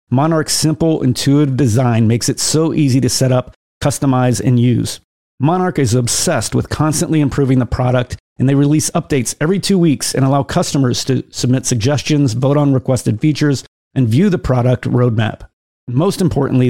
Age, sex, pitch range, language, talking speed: 30-49, male, 125-150 Hz, English, 165 wpm